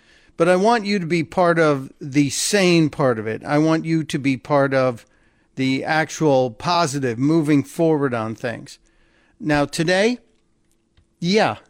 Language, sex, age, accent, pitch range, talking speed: English, male, 50-69, American, 145-180 Hz, 155 wpm